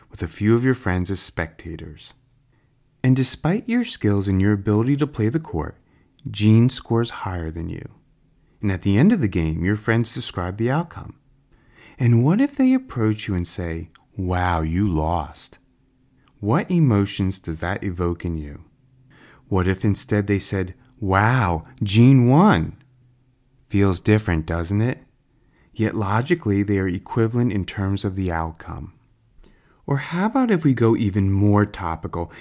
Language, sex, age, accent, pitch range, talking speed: English, male, 30-49, American, 95-125 Hz, 155 wpm